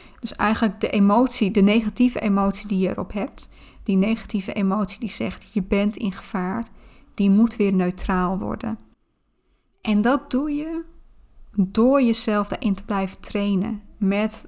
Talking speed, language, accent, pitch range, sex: 150 wpm, Dutch, Dutch, 195-220 Hz, female